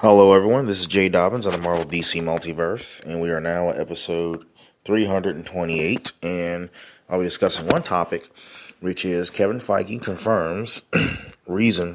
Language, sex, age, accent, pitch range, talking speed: English, male, 30-49, American, 85-100 Hz, 150 wpm